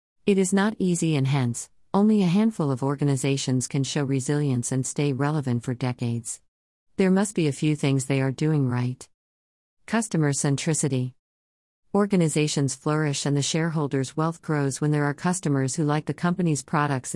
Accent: American